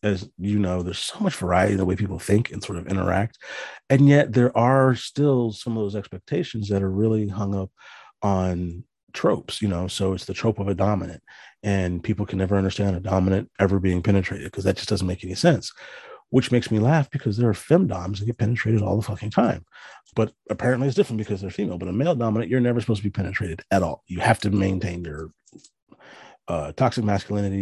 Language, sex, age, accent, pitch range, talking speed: English, male, 30-49, American, 95-115 Hz, 215 wpm